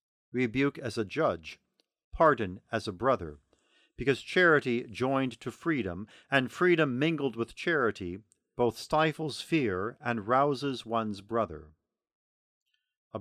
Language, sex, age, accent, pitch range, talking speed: English, male, 50-69, American, 115-145 Hz, 120 wpm